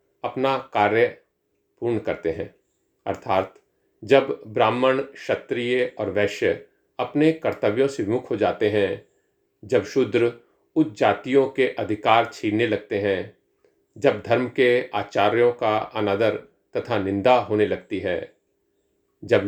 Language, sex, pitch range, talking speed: Hindi, male, 110-140 Hz, 120 wpm